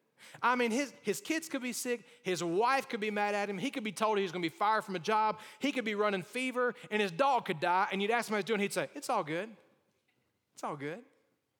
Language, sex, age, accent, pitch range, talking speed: English, male, 30-49, American, 195-255 Hz, 275 wpm